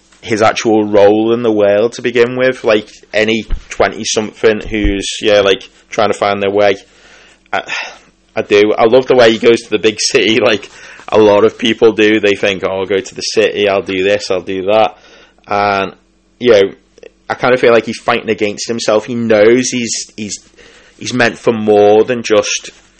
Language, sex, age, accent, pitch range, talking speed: English, male, 20-39, British, 100-115 Hz, 195 wpm